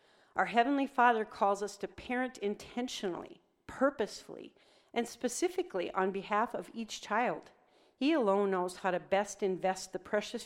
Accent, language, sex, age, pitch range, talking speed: American, English, female, 40-59, 185-225 Hz, 145 wpm